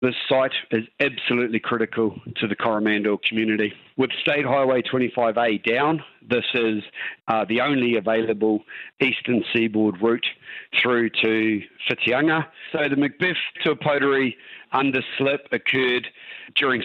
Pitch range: 110-130 Hz